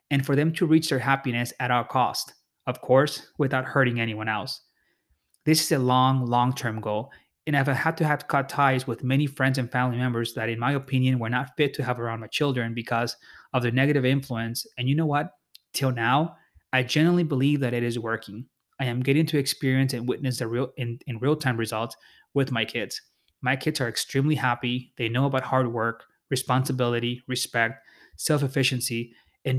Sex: male